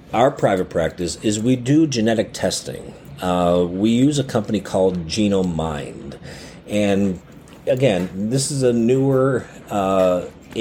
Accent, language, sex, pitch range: American, English, male, 90-115 Hz